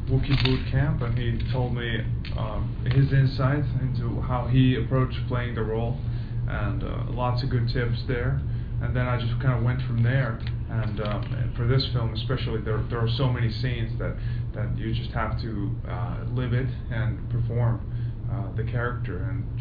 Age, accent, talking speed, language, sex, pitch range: 20-39, American, 185 wpm, English, male, 115-120 Hz